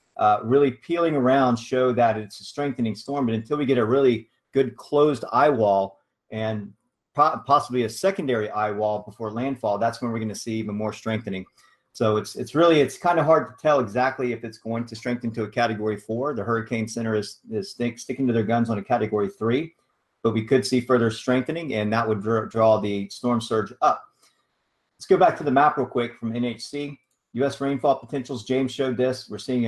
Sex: male